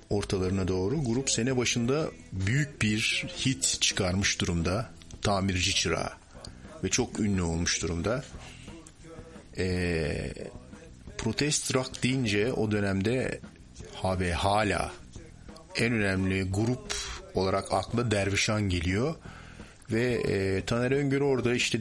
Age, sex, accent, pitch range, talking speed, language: 50-69, male, native, 95-115 Hz, 105 wpm, Turkish